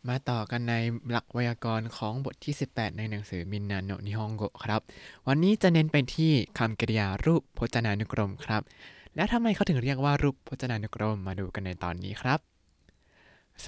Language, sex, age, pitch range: Thai, male, 20-39, 105-140 Hz